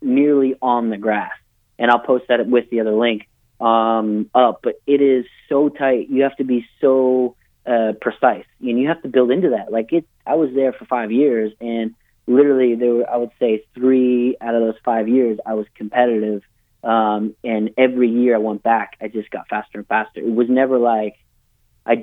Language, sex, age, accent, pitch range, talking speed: English, male, 30-49, American, 110-130 Hz, 205 wpm